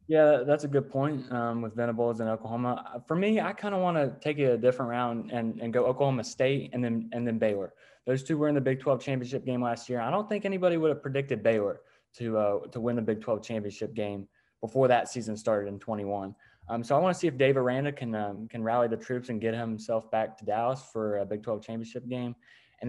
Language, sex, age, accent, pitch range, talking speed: English, male, 20-39, American, 110-130 Hz, 245 wpm